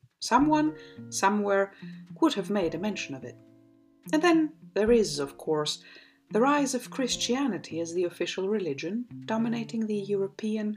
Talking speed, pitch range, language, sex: 145 wpm, 150-230 Hz, English, female